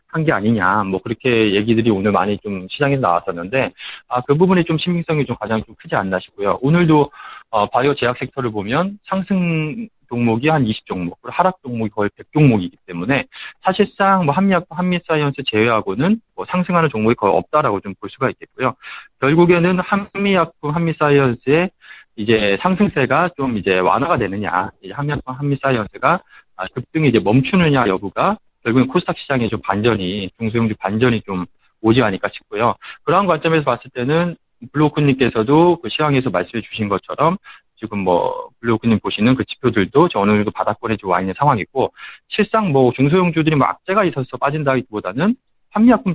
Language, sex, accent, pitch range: Korean, male, native, 110-165 Hz